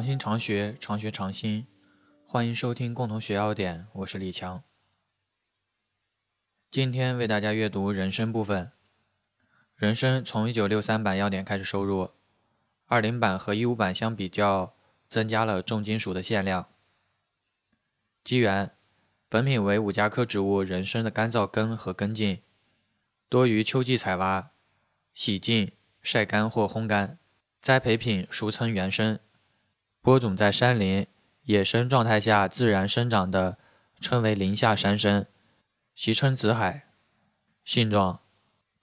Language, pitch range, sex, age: Chinese, 100-115 Hz, male, 20-39